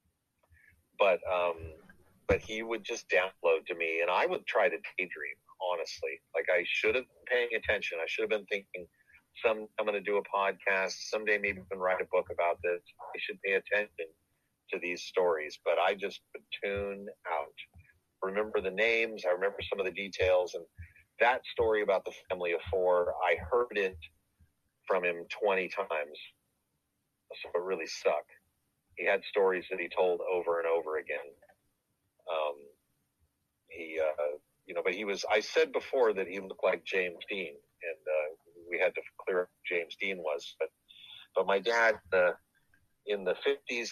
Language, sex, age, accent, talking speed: English, male, 40-59, American, 180 wpm